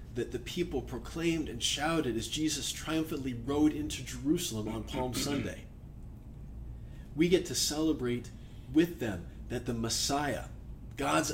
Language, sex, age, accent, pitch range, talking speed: English, male, 40-59, American, 115-145 Hz, 130 wpm